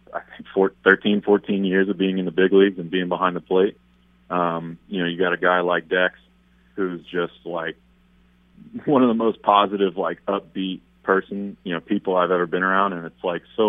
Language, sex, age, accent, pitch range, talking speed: English, male, 30-49, American, 80-95 Hz, 210 wpm